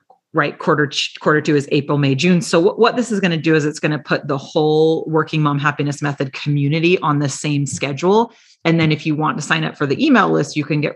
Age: 30-49